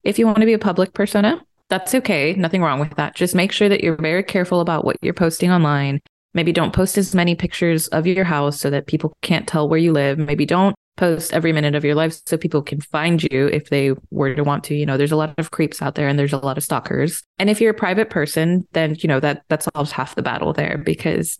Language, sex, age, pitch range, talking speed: English, female, 20-39, 145-175 Hz, 265 wpm